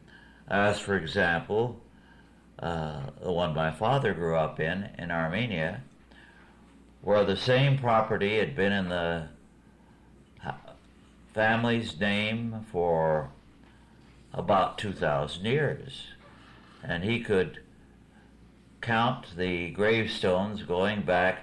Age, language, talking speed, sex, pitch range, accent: 60-79, English, 100 wpm, male, 85-105 Hz, American